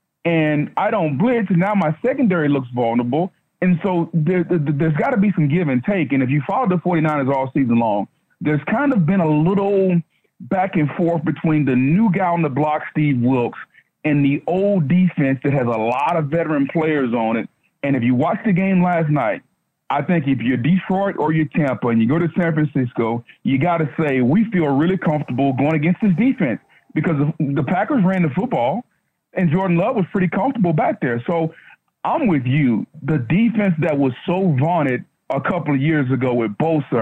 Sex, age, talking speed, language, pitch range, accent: male, 40-59, 205 wpm, English, 140-180 Hz, American